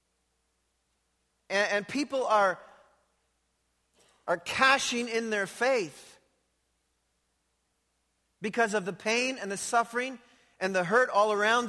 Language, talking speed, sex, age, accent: English, 105 wpm, male, 40-59, American